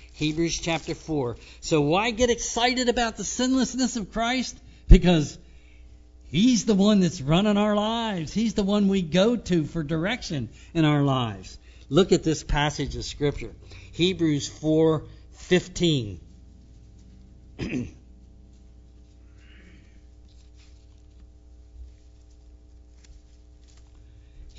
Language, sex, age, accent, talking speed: English, male, 60-79, American, 95 wpm